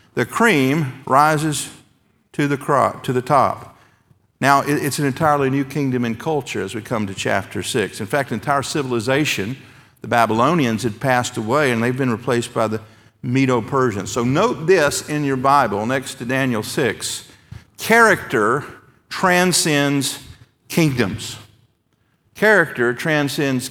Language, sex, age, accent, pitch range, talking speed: English, male, 50-69, American, 115-145 Hz, 135 wpm